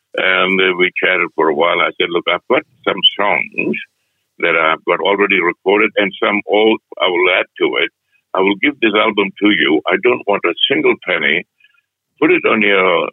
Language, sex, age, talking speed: English, male, 60-79, 195 wpm